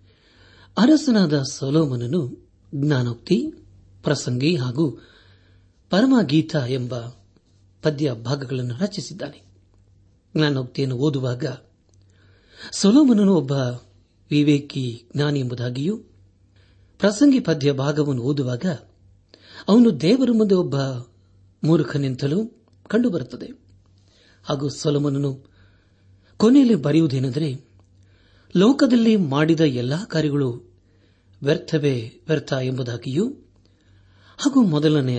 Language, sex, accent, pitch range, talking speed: Kannada, male, native, 100-160 Hz, 70 wpm